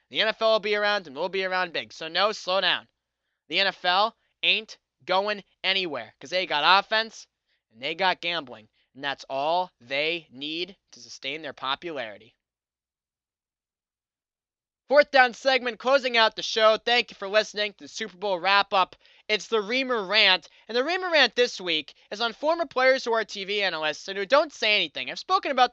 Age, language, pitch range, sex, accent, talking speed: 20-39, English, 175-240 Hz, male, American, 185 wpm